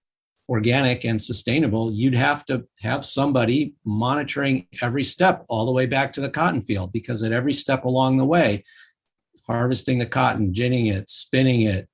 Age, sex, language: 50-69, male, English